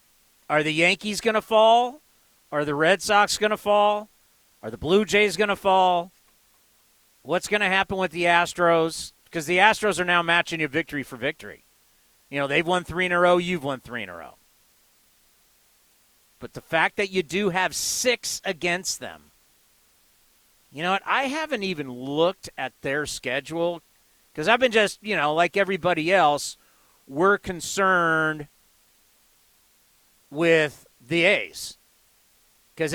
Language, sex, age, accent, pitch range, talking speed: English, male, 40-59, American, 140-190 Hz, 155 wpm